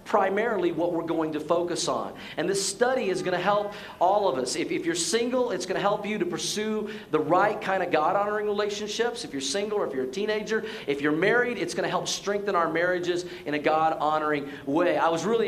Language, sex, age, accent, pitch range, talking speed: English, male, 40-59, American, 160-200 Hz, 230 wpm